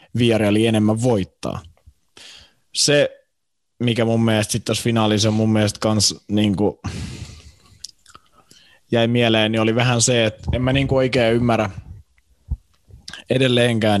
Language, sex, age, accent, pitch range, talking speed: Finnish, male, 20-39, native, 100-130 Hz, 120 wpm